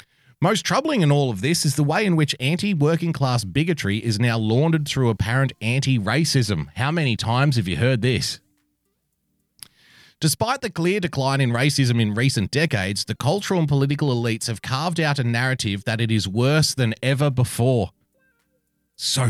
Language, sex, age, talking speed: English, male, 30-49, 165 wpm